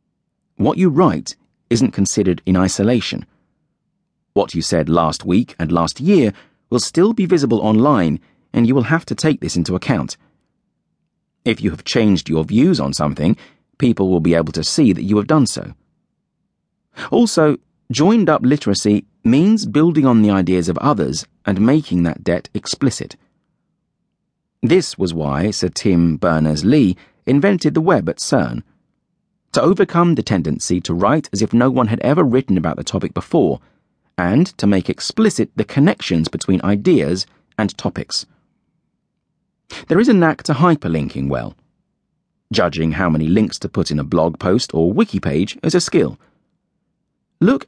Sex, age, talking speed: male, 40-59, 155 wpm